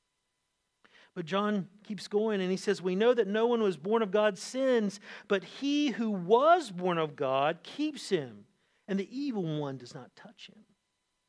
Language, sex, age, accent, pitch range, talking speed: English, male, 50-69, American, 185-245 Hz, 185 wpm